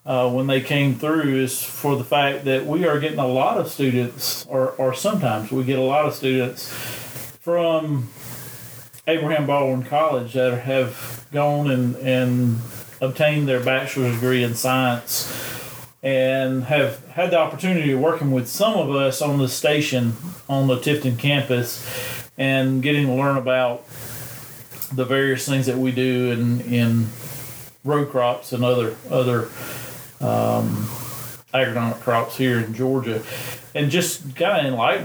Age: 40-59